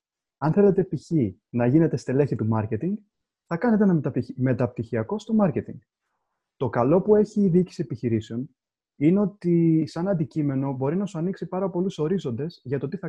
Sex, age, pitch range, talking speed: male, 30-49, 120-180 Hz, 165 wpm